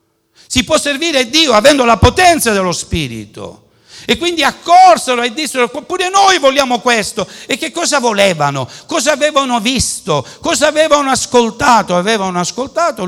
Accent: native